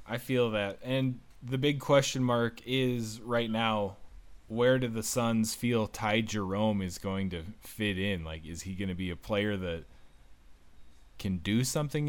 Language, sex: English, male